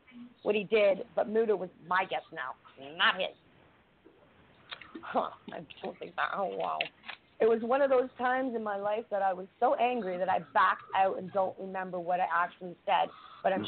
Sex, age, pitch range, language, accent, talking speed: female, 40-59, 190-240 Hz, English, American, 200 wpm